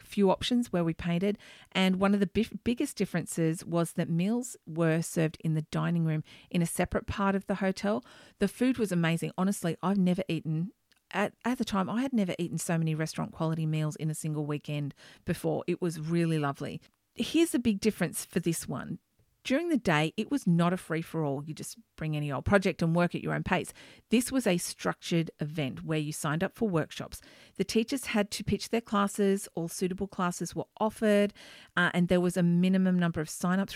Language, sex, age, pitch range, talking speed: English, female, 40-59, 160-210 Hz, 205 wpm